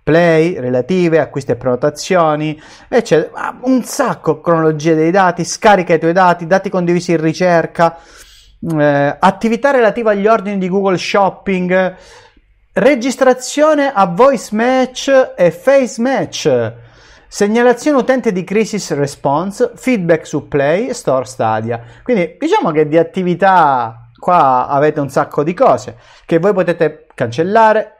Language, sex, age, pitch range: Italian, male, 30-49, 150-225 Hz